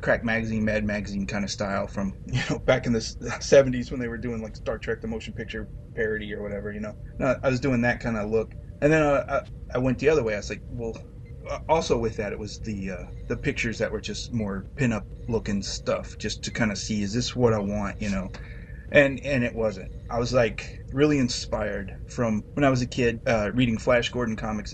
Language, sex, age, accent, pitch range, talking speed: English, male, 20-39, American, 105-120 Hz, 235 wpm